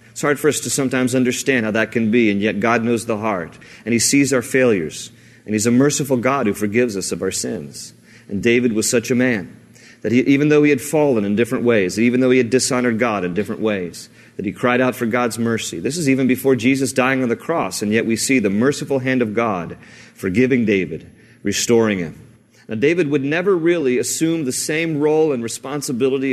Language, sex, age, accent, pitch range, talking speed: English, male, 40-59, American, 115-135 Hz, 220 wpm